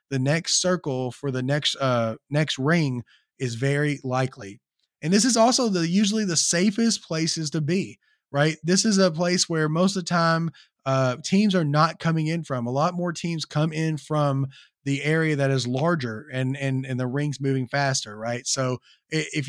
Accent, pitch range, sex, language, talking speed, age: American, 130-165 Hz, male, English, 190 wpm, 30-49